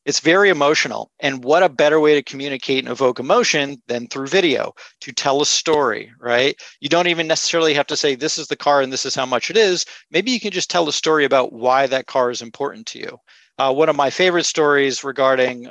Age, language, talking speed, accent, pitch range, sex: 40-59, English, 235 wpm, American, 130-155 Hz, male